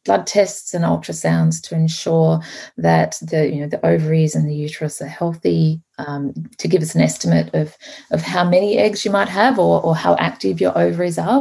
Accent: Australian